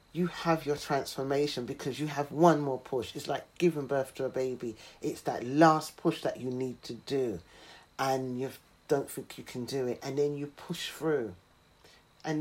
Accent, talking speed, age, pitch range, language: British, 195 wpm, 40-59, 130-155 Hz, English